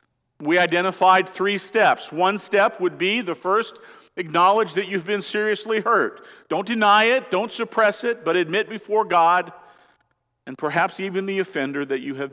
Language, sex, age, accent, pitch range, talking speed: English, male, 50-69, American, 185-220 Hz, 165 wpm